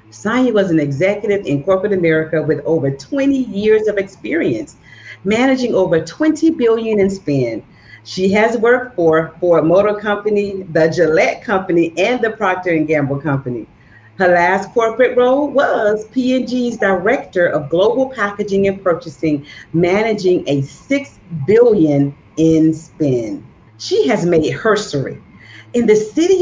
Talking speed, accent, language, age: 140 wpm, American, English, 40-59